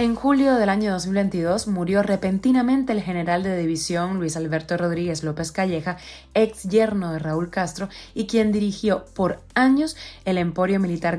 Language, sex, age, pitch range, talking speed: Spanish, female, 20-39, 165-205 Hz, 155 wpm